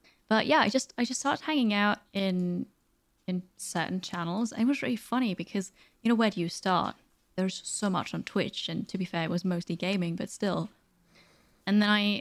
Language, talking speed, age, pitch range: English, 210 wpm, 20-39, 180-215 Hz